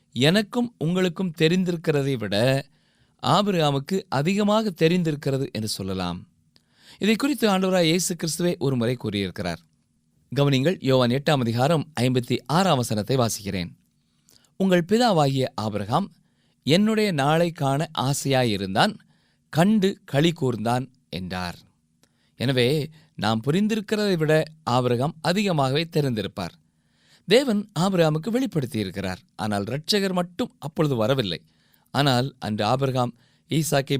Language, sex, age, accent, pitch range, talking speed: Tamil, male, 20-39, native, 115-175 Hz, 95 wpm